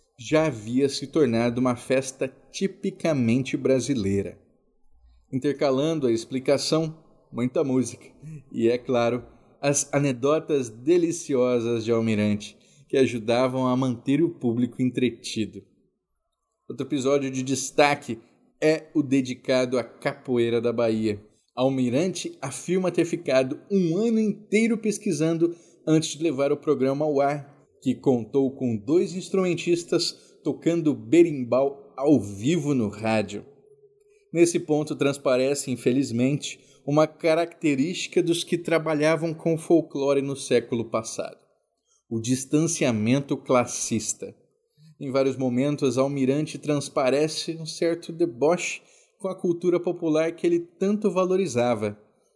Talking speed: 110 wpm